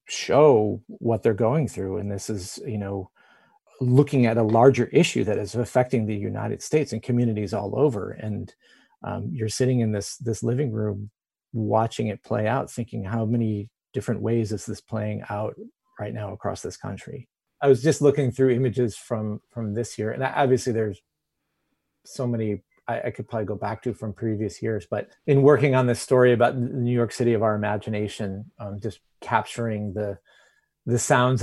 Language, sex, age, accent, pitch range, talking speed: English, male, 30-49, American, 105-125 Hz, 185 wpm